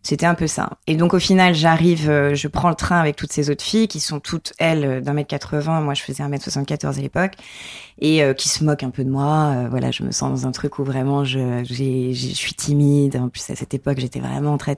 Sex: female